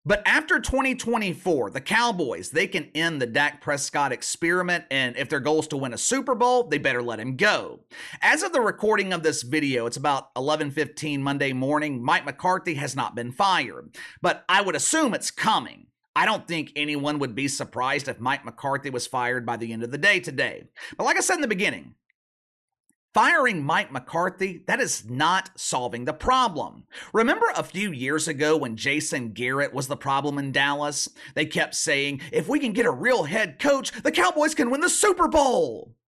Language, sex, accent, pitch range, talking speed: English, male, American, 140-215 Hz, 195 wpm